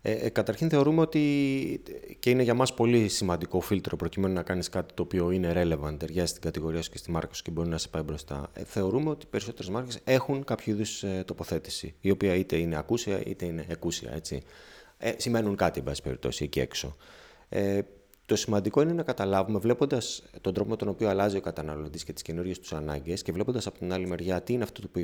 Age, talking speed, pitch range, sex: 30-49, 200 wpm, 85-115 Hz, male